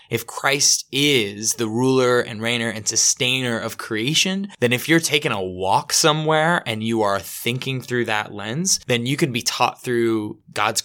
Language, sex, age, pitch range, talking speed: English, male, 20-39, 110-130 Hz, 175 wpm